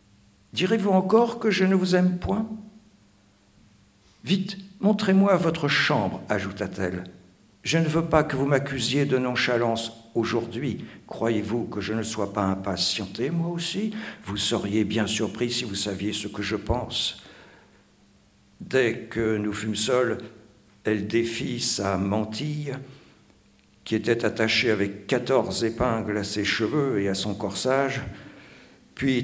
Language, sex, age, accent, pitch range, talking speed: French, male, 60-79, French, 100-125 Hz, 135 wpm